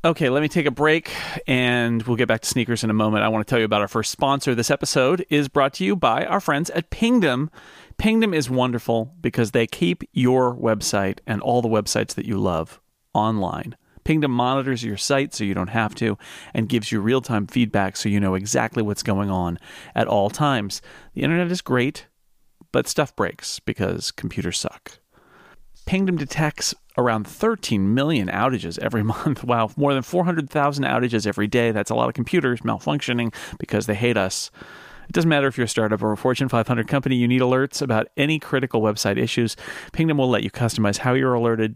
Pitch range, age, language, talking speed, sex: 110-140 Hz, 40-59, English, 200 wpm, male